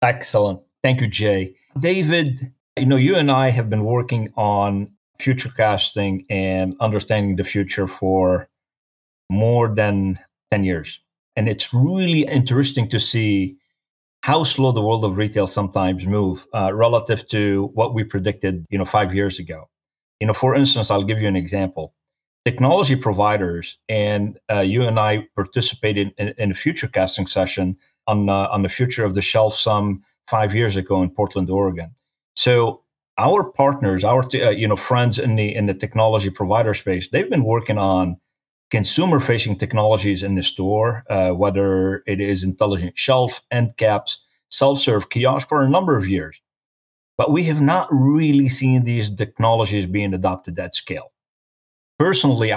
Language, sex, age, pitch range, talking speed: English, male, 40-59, 95-125 Hz, 160 wpm